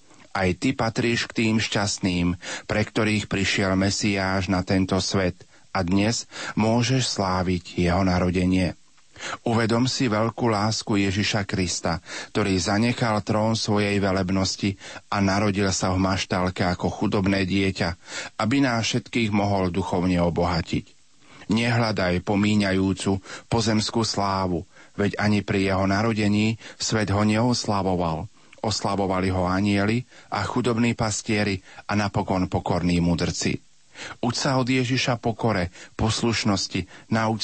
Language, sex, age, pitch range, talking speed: Slovak, male, 40-59, 95-110 Hz, 115 wpm